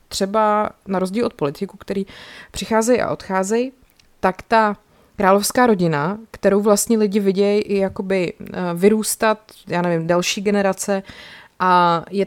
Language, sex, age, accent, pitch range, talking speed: Czech, female, 30-49, native, 165-200 Hz, 125 wpm